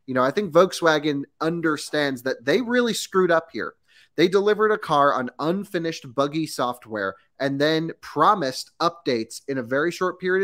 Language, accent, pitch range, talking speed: English, American, 135-170 Hz, 165 wpm